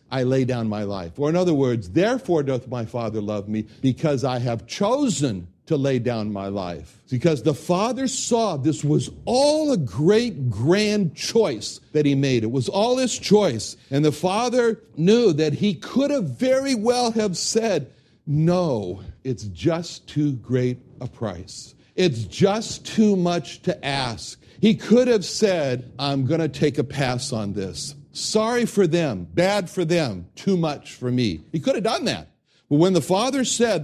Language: English